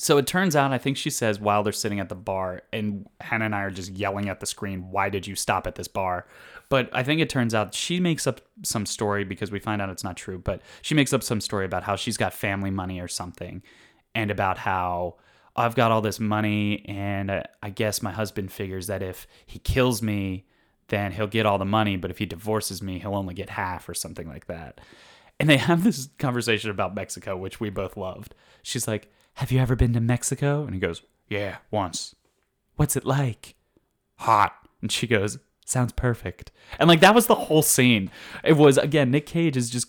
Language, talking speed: English, 225 wpm